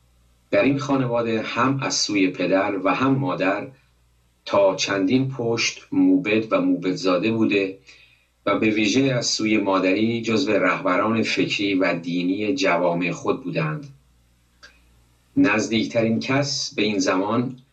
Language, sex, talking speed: Persian, male, 125 wpm